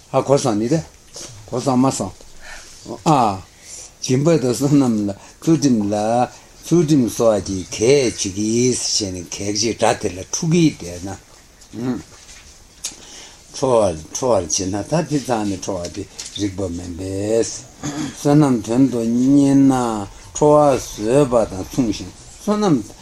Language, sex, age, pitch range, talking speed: Italian, male, 60-79, 100-135 Hz, 85 wpm